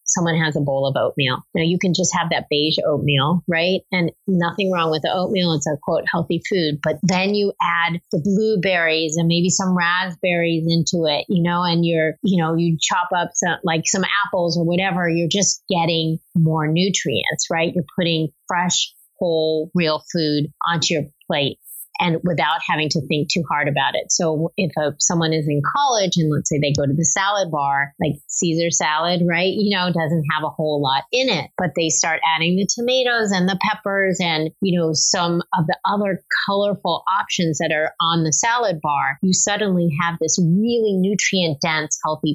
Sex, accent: female, American